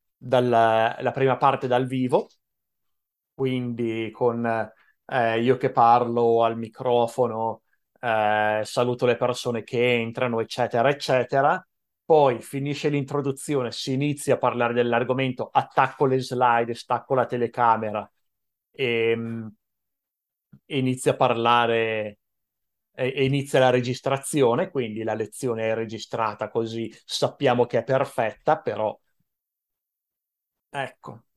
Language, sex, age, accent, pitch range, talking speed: Italian, male, 30-49, native, 115-135 Hz, 105 wpm